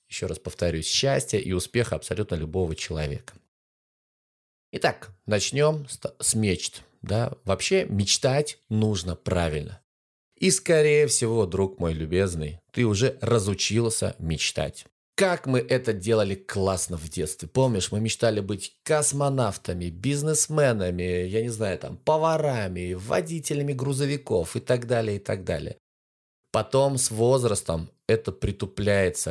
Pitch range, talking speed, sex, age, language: 95-130 Hz, 120 wpm, male, 30-49, Russian